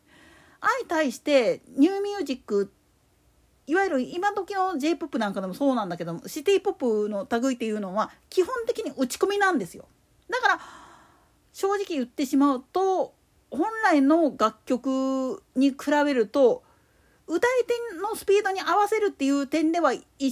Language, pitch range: Japanese, 245-375 Hz